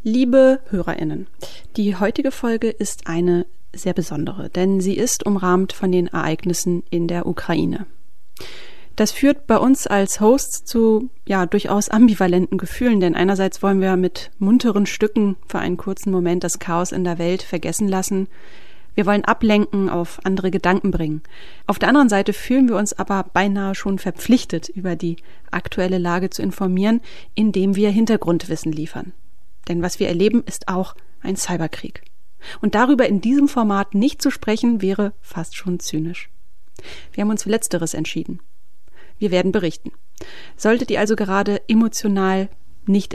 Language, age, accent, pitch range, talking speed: German, 30-49, German, 175-215 Hz, 155 wpm